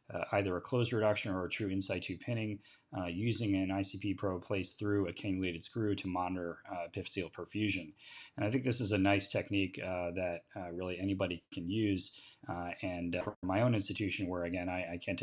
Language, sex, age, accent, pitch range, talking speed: English, male, 30-49, American, 90-105 Hz, 200 wpm